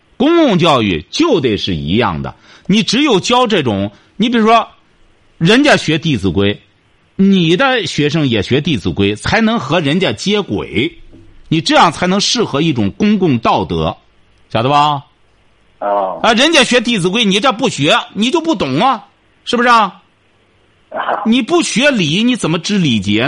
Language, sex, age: Chinese, male, 50-69